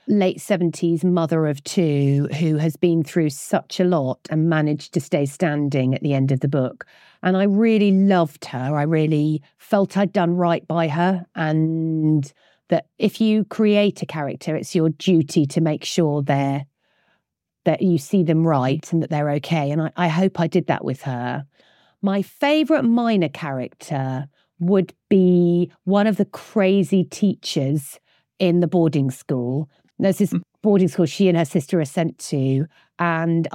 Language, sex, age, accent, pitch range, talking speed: English, female, 40-59, British, 155-185 Hz, 170 wpm